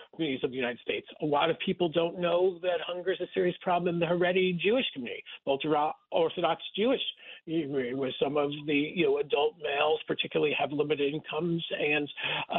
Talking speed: 185 wpm